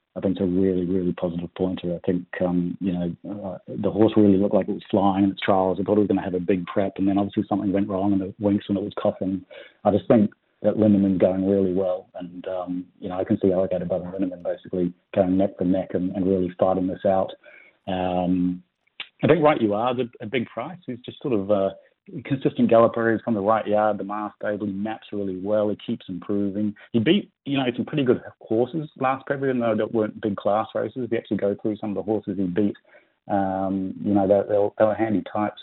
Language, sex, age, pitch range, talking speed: English, male, 30-49, 95-105 Hz, 240 wpm